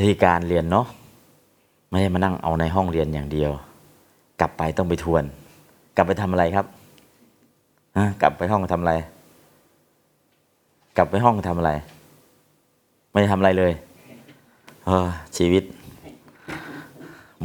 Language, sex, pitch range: Thai, male, 80-100 Hz